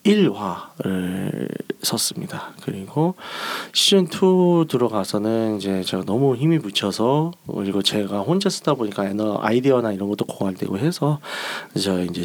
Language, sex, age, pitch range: Korean, male, 30-49, 105-170 Hz